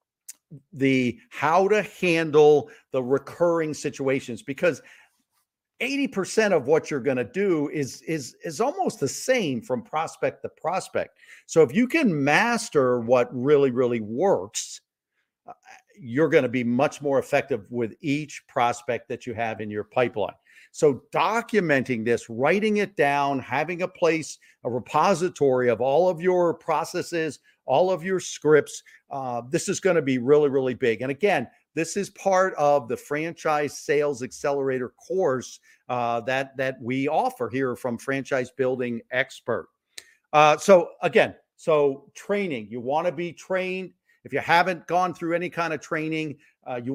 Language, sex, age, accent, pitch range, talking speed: English, male, 50-69, American, 130-175 Hz, 150 wpm